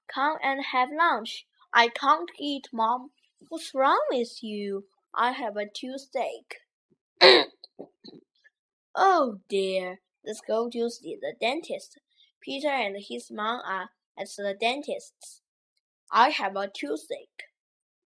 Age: 10-29